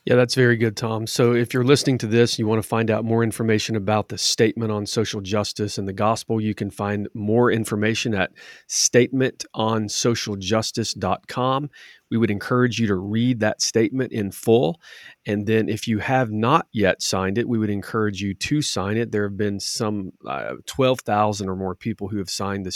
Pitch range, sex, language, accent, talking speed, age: 100-115 Hz, male, English, American, 190 wpm, 40-59